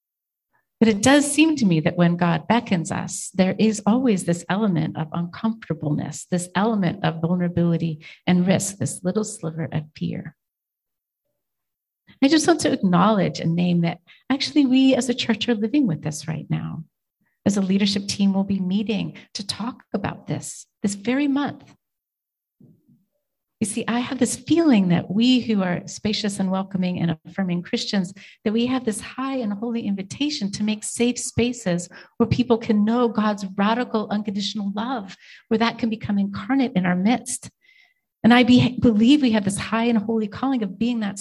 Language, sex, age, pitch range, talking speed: English, female, 40-59, 185-235 Hz, 175 wpm